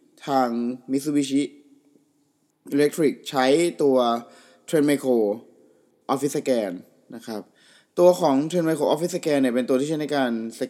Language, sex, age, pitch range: Thai, male, 20-39, 115-145 Hz